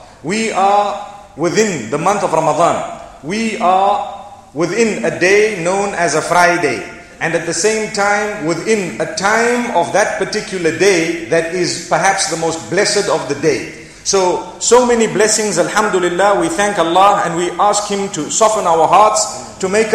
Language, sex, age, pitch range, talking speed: English, male, 40-59, 175-215 Hz, 165 wpm